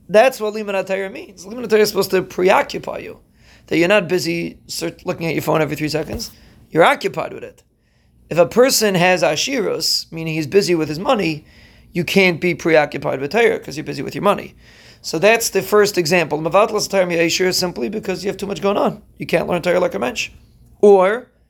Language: English